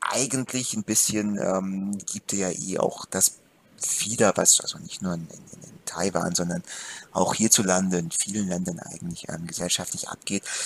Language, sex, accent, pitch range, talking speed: German, male, German, 95-135 Hz, 150 wpm